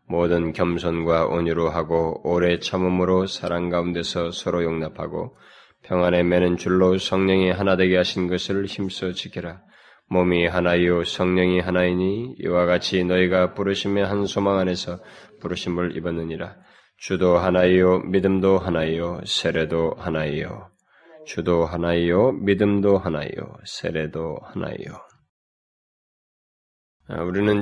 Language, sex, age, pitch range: Korean, male, 20-39, 85-100 Hz